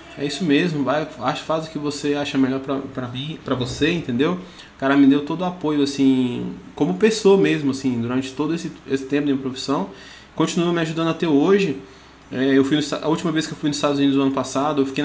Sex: male